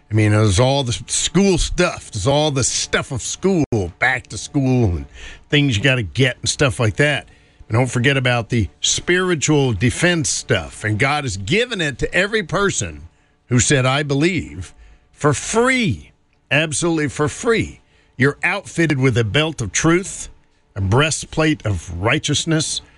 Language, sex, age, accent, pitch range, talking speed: English, male, 50-69, American, 110-155 Hz, 160 wpm